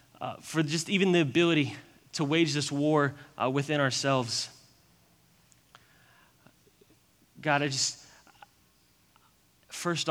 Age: 20-39